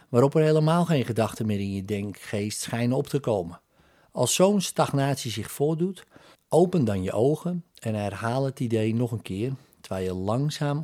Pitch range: 110-150 Hz